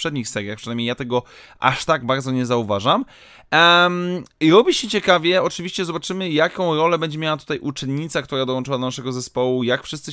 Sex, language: male, Polish